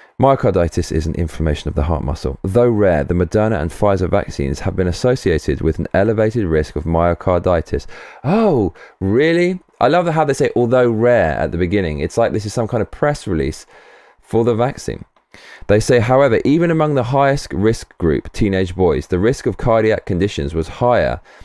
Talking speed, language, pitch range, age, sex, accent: 185 wpm, English, 85-115 Hz, 20-39, male, British